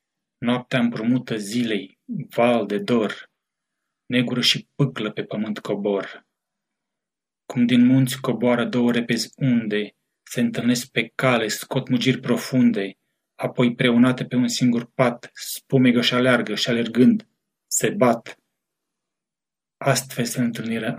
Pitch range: 115-130 Hz